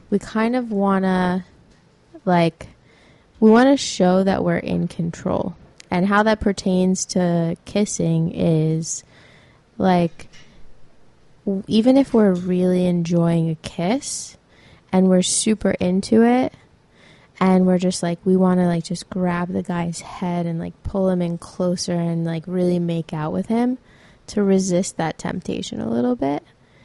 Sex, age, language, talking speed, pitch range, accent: female, 20-39, English, 150 wpm, 175-195 Hz, American